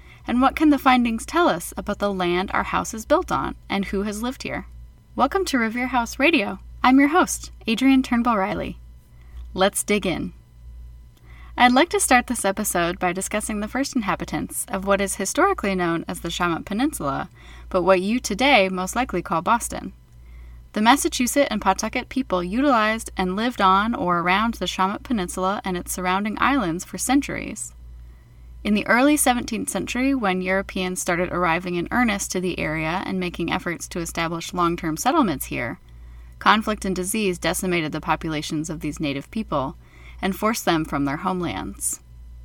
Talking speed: 170 wpm